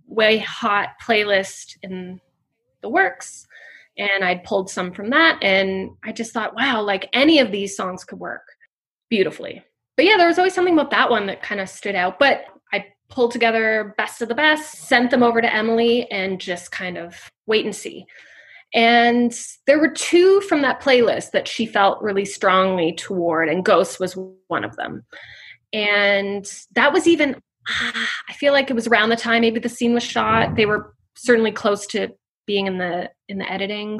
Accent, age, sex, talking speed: American, 20-39, female, 185 wpm